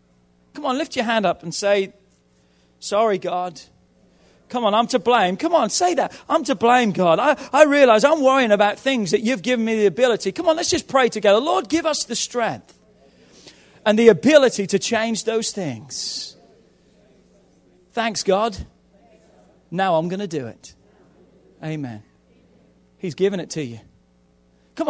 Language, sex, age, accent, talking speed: English, male, 40-59, British, 165 wpm